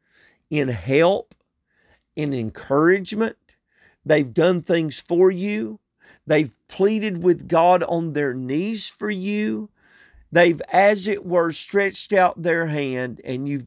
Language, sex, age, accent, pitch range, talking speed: English, male, 50-69, American, 135-190 Hz, 125 wpm